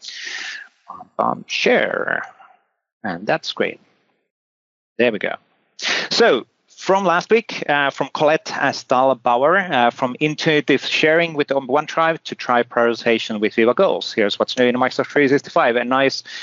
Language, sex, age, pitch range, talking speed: English, male, 30-49, 110-145 Hz, 130 wpm